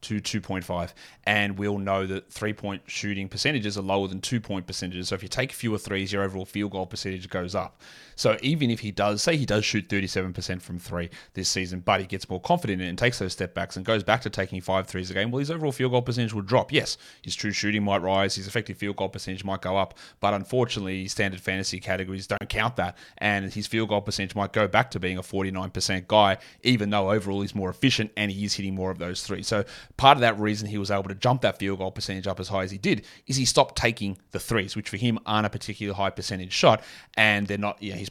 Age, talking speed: 30-49, 250 wpm